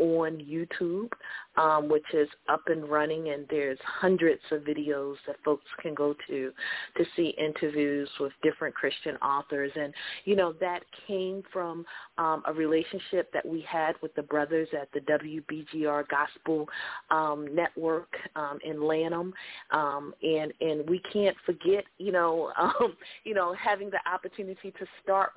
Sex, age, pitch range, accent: female, 40-59, 150-180 Hz, American